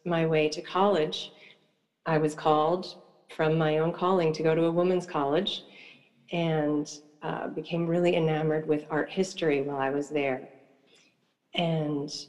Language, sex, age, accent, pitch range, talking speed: English, female, 40-59, American, 150-170 Hz, 145 wpm